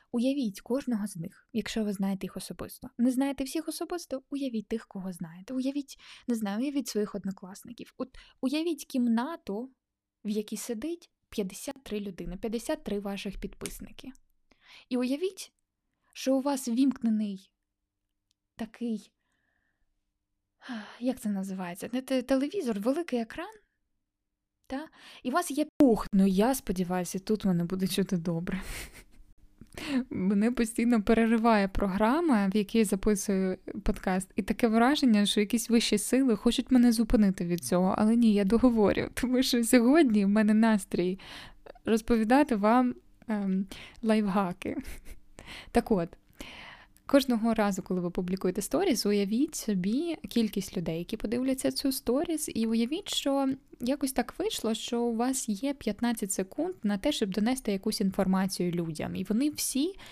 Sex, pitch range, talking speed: female, 200-260 Hz, 130 wpm